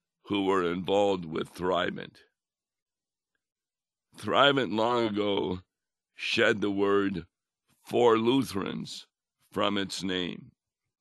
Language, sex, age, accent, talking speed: English, male, 60-79, American, 85 wpm